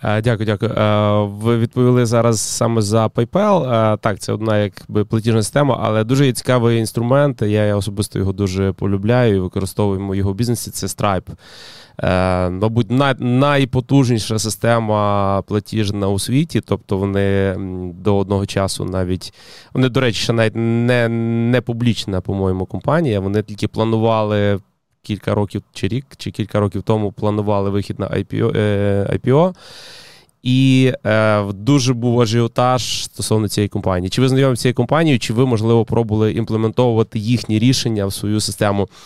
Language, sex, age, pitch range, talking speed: Ukrainian, male, 20-39, 100-120 Hz, 135 wpm